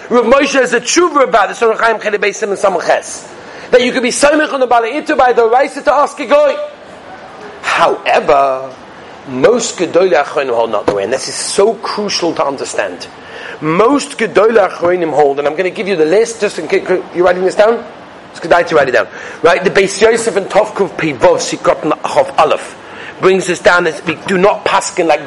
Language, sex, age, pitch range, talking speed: English, male, 40-59, 210-280 Hz, 205 wpm